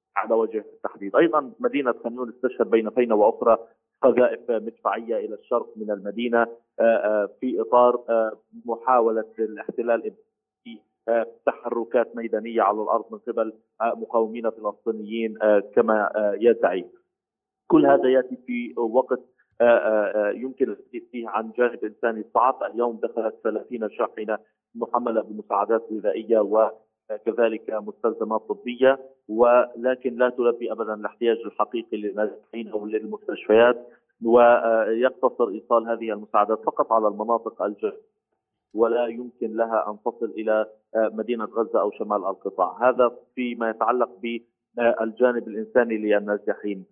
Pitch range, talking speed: 110-125 Hz, 110 wpm